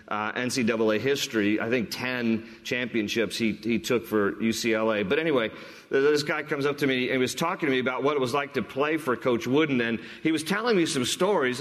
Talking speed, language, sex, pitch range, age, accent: 220 wpm, English, male, 125-175 Hz, 40-59, American